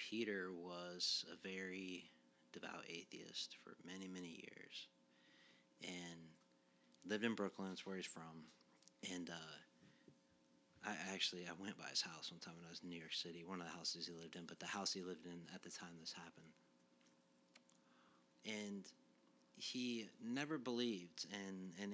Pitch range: 75-100 Hz